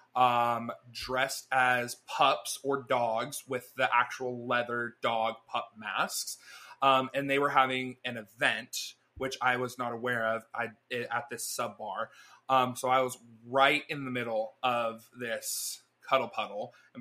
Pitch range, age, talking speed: 120-140 Hz, 20-39, 150 wpm